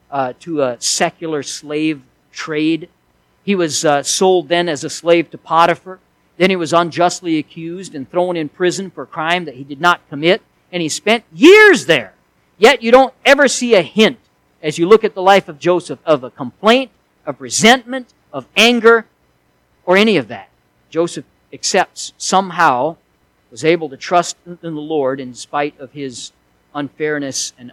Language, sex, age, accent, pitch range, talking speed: English, male, 50-69, American, 135-175 Hz, 175 wpm